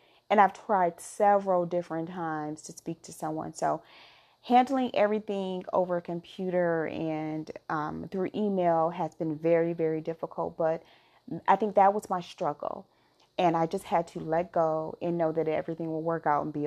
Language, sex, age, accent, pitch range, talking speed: English, female, 30-49, American, 160-190 Hz, 175 wpm